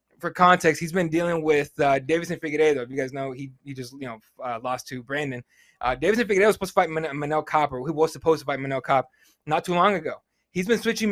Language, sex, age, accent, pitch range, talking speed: English, male, 20-39, American, 145-195 Hz, 250 wpm